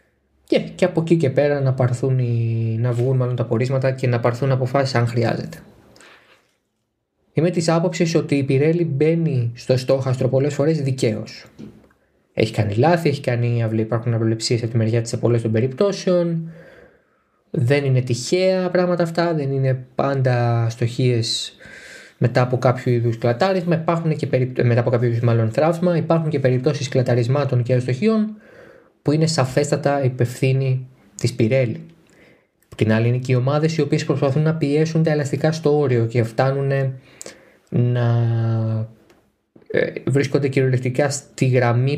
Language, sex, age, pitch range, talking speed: Greek, male, 20-39, 120-150 Hz, 130 wpm